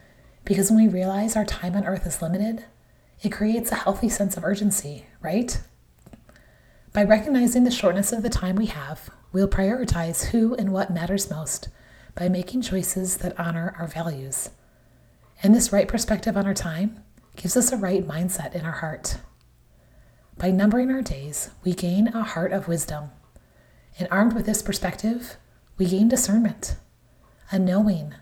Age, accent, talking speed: 30-49, American, 160 wpm